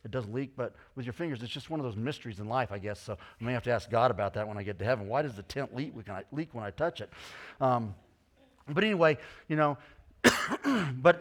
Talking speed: 260 wpm